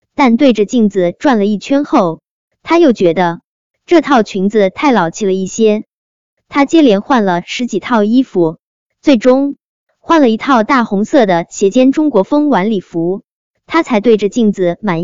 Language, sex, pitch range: Chinese, male, 195-280 Hz